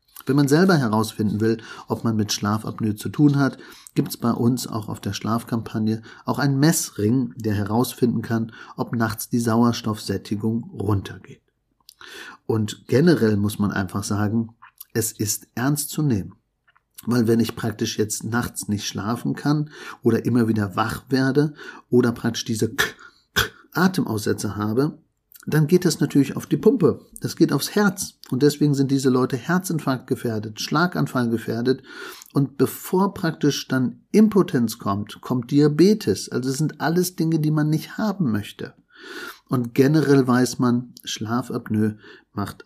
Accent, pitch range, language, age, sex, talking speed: German, 110-140 Hz, German, 50-69, male, 150 wpm